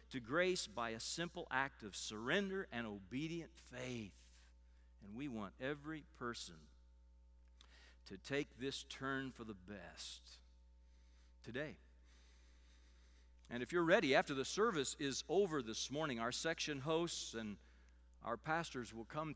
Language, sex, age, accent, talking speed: English, male, 50-69, American, 135 wpm